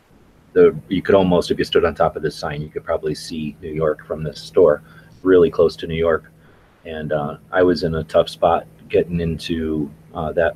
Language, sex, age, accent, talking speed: English, male, 30-49, American, 210 wpm